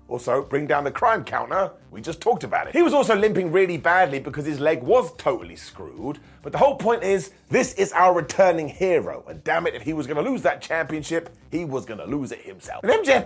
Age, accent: 30-49, British